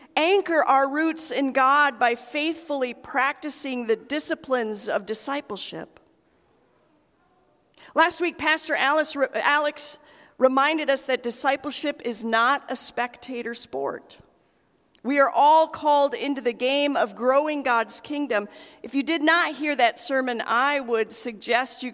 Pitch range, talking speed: 245-305 Hz, 130 wpm